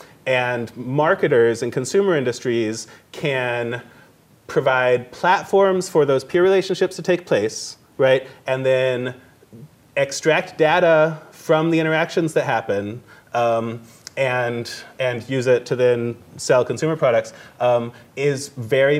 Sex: male